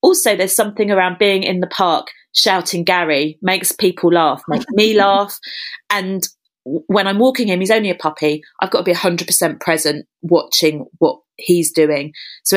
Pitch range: 150-195 Hz